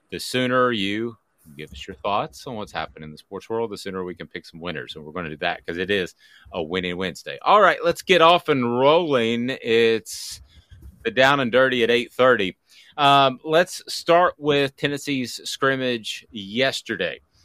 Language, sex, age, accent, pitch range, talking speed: English, male, 30-49, American, 95-125 Hz, 185 wpm